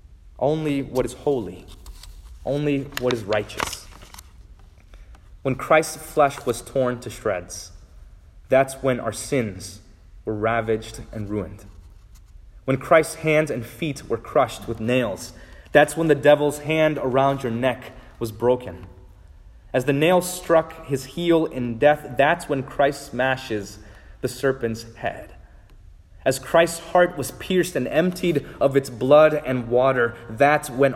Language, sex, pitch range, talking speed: English, male, 100-140 Hz, 140 wpm